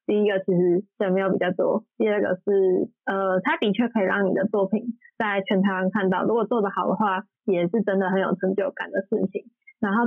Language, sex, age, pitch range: Chinese, female, 20-39, 190-225 Hz